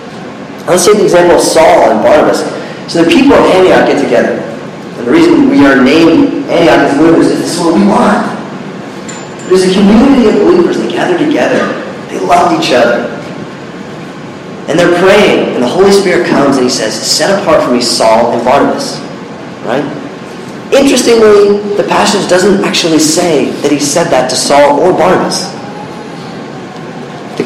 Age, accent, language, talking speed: 40-59, American, English, 165 wpm